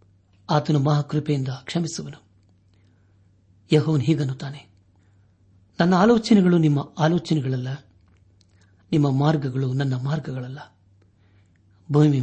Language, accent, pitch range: Kannada, native, 100-155 Hz